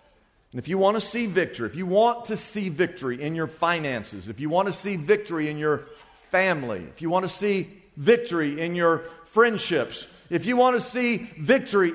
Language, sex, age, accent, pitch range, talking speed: English, male, 50-69, American, 160-230 Hz, 200 wpm